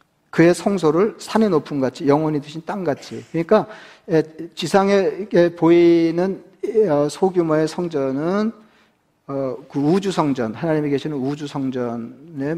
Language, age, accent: Korean, 40-59, native